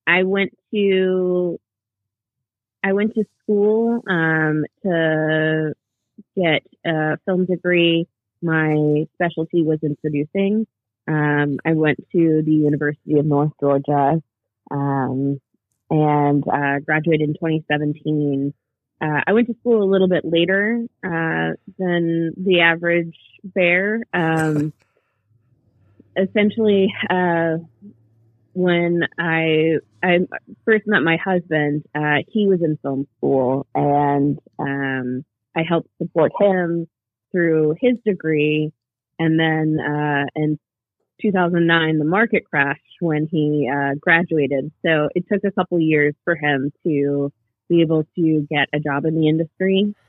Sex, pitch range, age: female, 140-175 Hz, 20-39